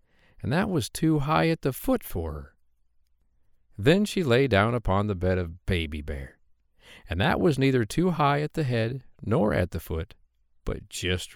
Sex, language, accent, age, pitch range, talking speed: male, English, American, 50-69, 80-135 Hz, 185 wpm